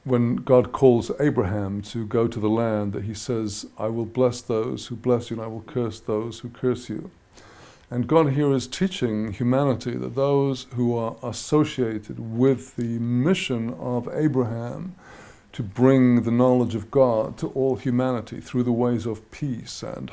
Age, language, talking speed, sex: 50-69, English, 175 wpm, male